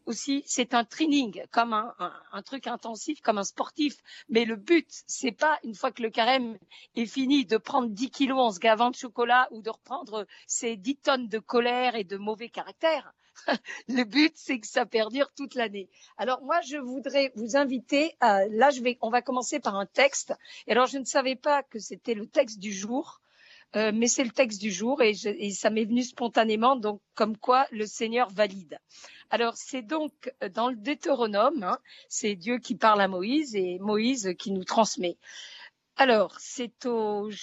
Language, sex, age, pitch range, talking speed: French, female, 50-69, 215-270 Hz, 200 wpm